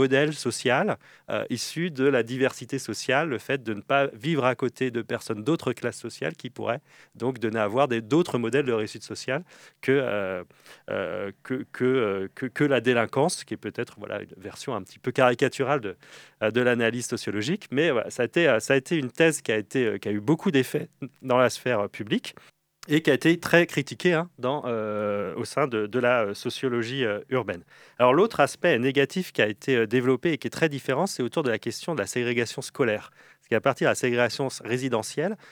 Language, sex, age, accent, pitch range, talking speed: French, male, 30-49, French, 115-145 Hz, 210 wpm